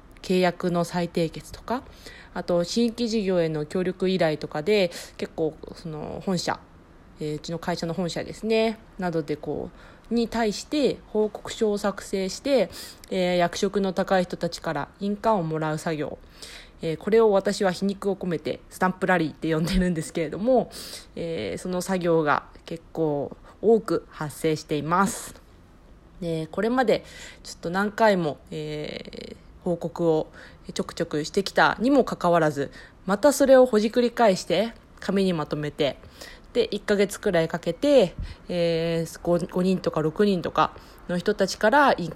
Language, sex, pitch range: Japanese, female, 165-205 Hz